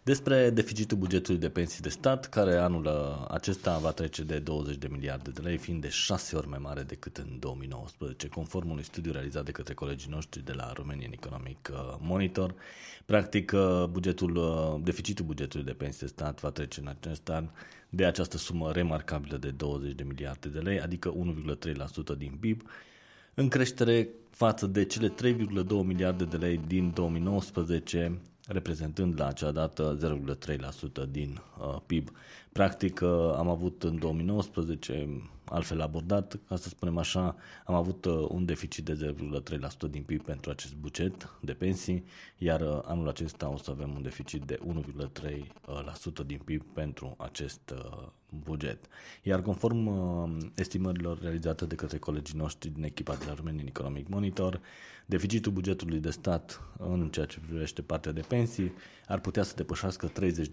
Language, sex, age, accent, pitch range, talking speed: Romanian, male, 30-49, native, 75-90 Hz, 155 wpm